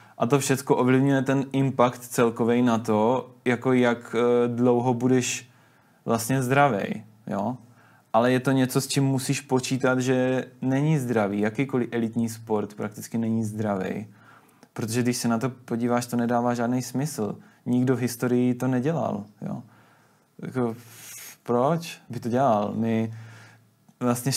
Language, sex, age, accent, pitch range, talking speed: Czech, male, 20-39, native, 115-130 Hz, 135 wpm